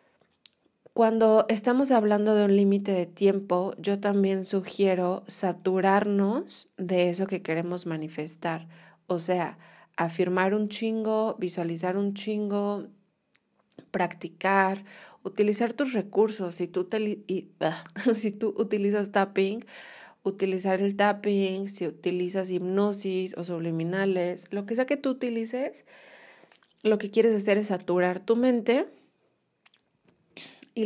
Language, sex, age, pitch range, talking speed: Spanish, female, 30-49, 175-210 Hz, 110 wpm